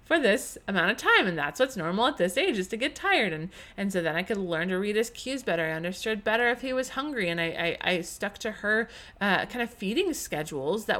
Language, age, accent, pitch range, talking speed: English, 30-49, American, 170-220 Hz, 260 wpm